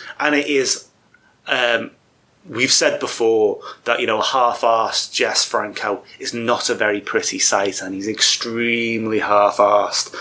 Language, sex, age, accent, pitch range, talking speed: English, male, 30-49, British, 110-160 Hz, 135 wpm